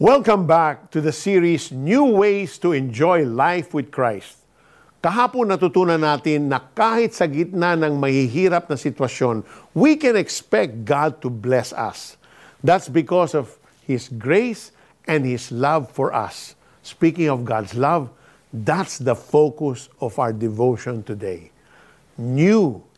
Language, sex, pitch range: Filipino, male, 135-180 Hz